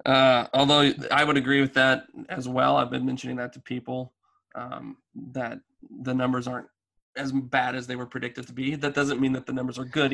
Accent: American